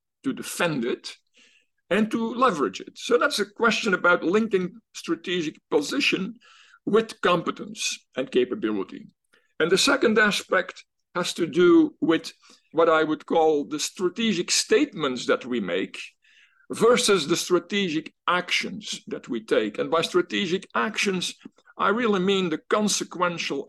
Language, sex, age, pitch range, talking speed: English, male, 50-69, 170-250 Hz, 135 wpm